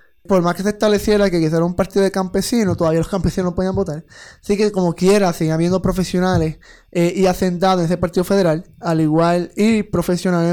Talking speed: 205 wpm